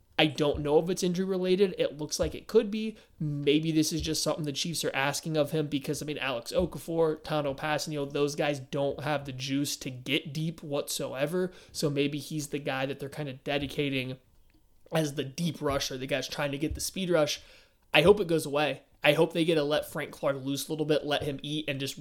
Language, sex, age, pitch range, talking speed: English, male, 20-39, 140-160 Hz, 230 wpm